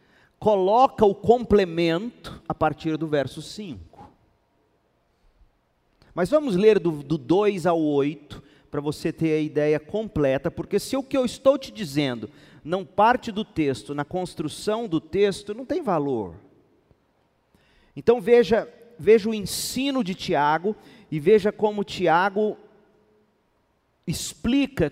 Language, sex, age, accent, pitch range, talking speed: Portuguese, male, 40-59, Brazilian, 140-210 Hz, 130 wpm